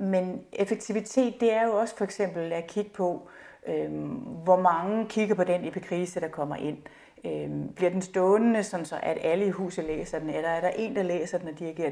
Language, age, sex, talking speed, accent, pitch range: Danish, 30-49, female, 210 wpm, native, 165-205 Hz